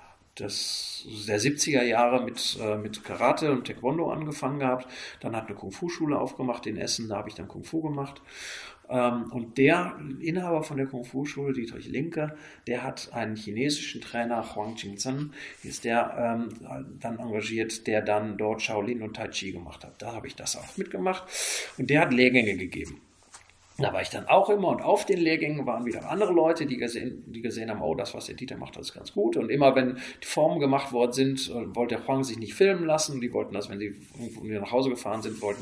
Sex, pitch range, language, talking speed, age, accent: male, 110-140 Hz, German, 200 wpm, 40-59, German